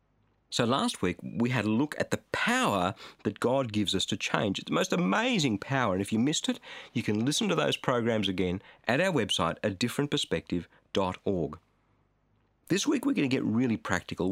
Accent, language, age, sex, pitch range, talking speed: Australian, English, 50-69, male, 110-160 Hz, 190 wpm